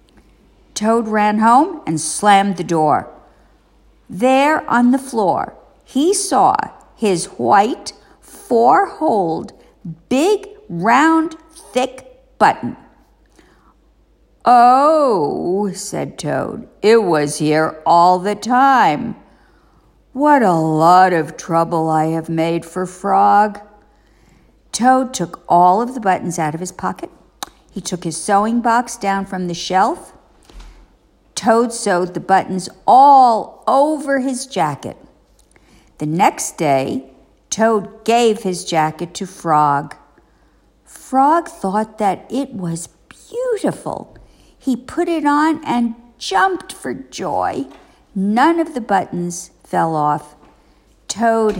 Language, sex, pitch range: English, female, 170-255 Hz